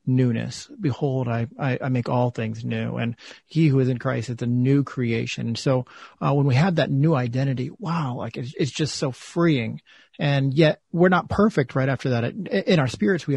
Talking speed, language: 210 wpm, English